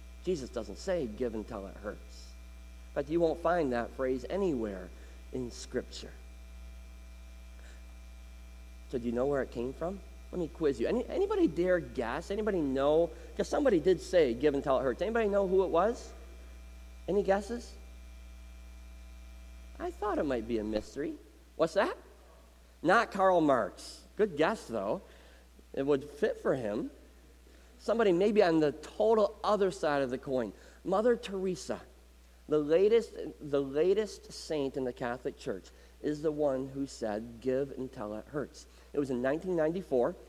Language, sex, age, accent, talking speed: English, male, 40-59, American, 155 wpm